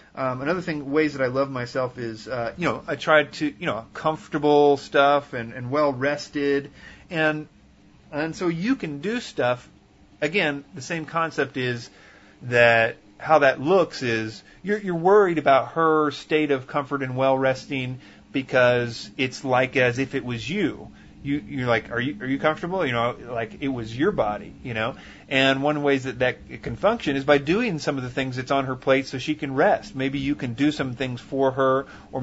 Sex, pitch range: male, 125-150 Hz